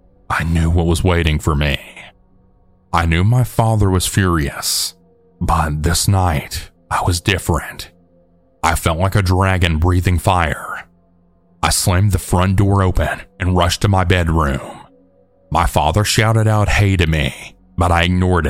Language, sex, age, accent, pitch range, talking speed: English, male, 30-49, American, 85-95 Hz, 150 wpm